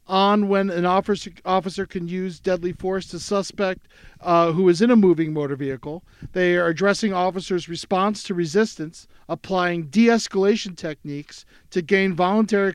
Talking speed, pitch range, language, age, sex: 150 wpm, 170-210 Hz, English, 40-59, male